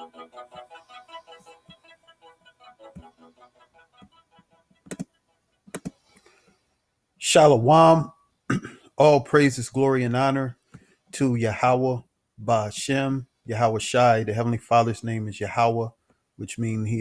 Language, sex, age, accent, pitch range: English, male, 40-59, American, 105-125 Hz